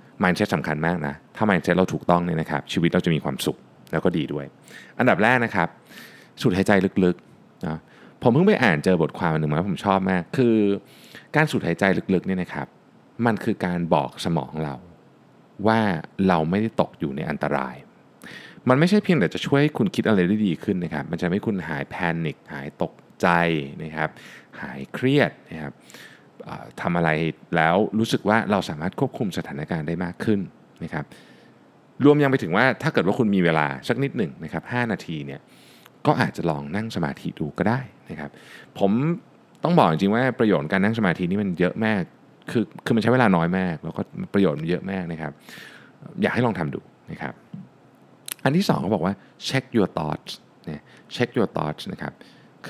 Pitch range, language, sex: 80-115 Hz, Thai, male